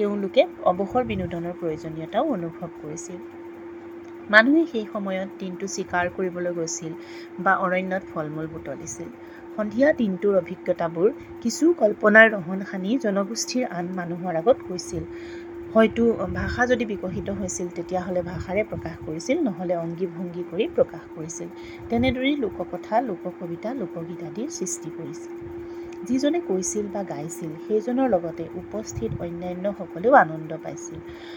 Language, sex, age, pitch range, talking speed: English, female, 30-49, 170-240 Hz, 110 wpm